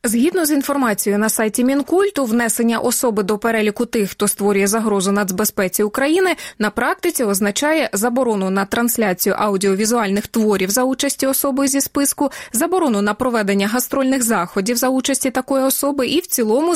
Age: 20-39